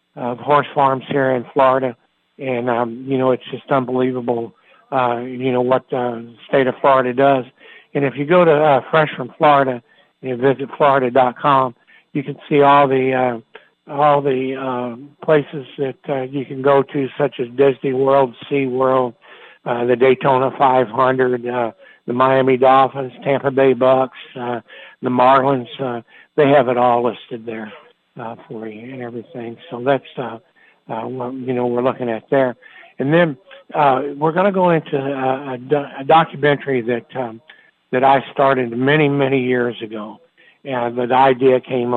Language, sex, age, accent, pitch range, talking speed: English, male, 60-79, American, 125-140 Hz, 175 wpm